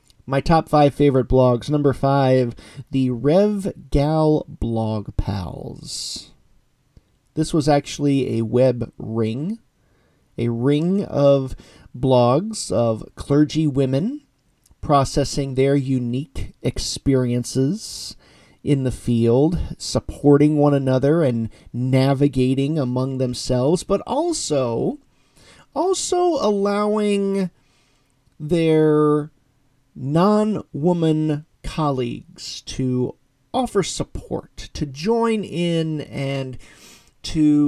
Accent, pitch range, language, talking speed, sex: American, 125-155 Hz, English, 85 wpm, male